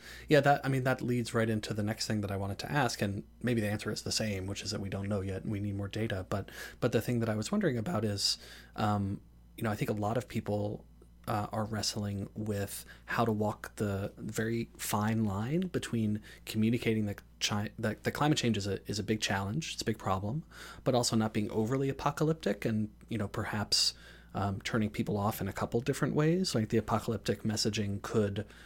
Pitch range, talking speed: 100-115 Hz, 225 wpm